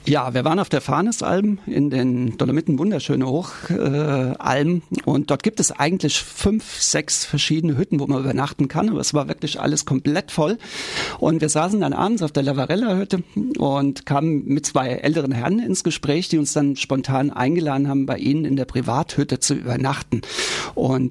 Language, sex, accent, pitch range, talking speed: German, male, German, 135-160 Hz, 175 wpm